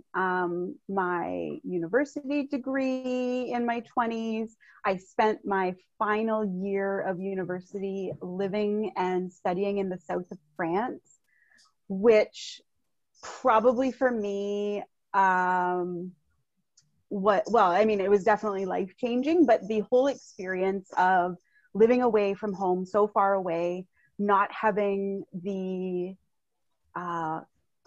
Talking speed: 110 wpm